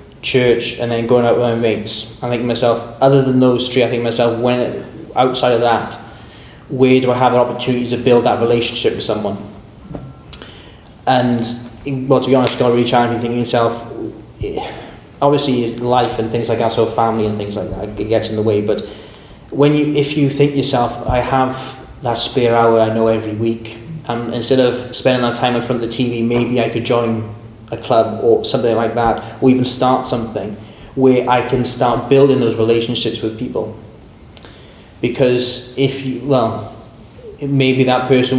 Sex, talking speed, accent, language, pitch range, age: male, 195 wpm, British, English, 115-130 Hz, 20-39